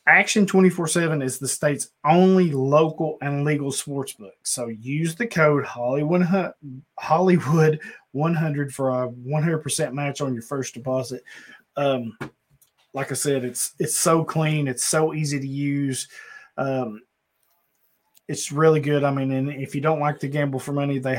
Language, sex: English, male